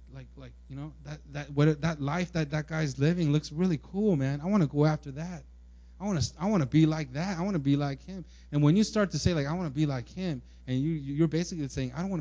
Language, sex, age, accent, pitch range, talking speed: English, male, 30-49, American, 120-170 Hz, 290 wpm